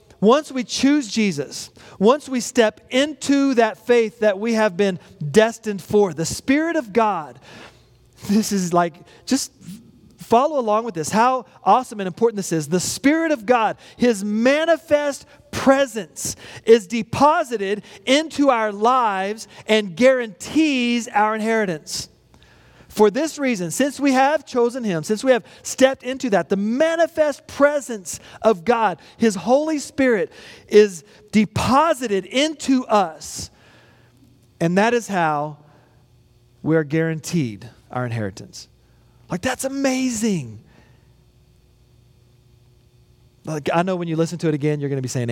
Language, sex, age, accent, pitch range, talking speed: English, male, 40-59, American, 160-260 Hz, 135 wpm